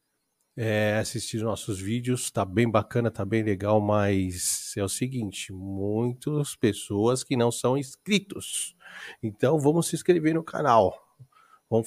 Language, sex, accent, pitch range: Portuguese, male, Brazilian, 105-130 Hz